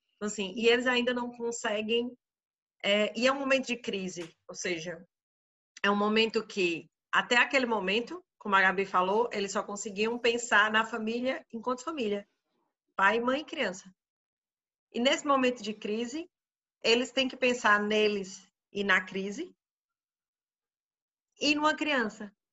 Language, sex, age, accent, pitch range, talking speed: Portuguese, female, 40-59, Brazilian, 195-250 Hz, 145 wpm